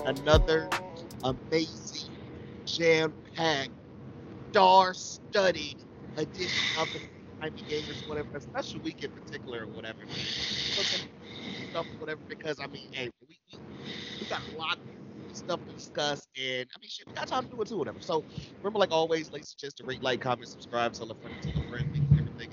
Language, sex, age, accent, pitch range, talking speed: English, male, 30-49, American, 120-155 Hz, 170 wpm